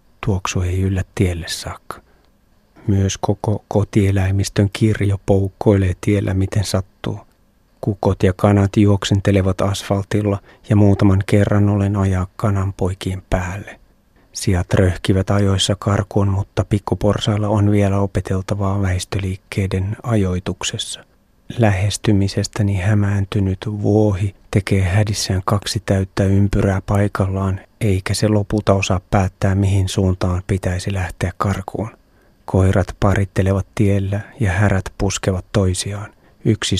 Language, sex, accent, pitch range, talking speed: Finnish, male, native, 95-105 Hz, 105 wpm